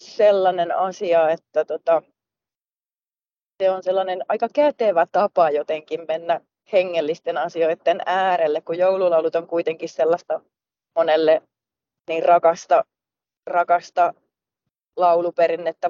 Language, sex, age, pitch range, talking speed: Finnish, female, 30-49, 160-190 Hz, 95 wpm